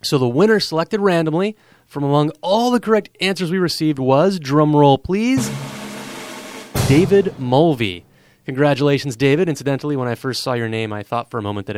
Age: 30-49